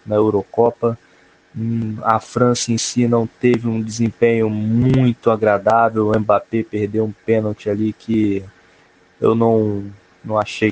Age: 20-39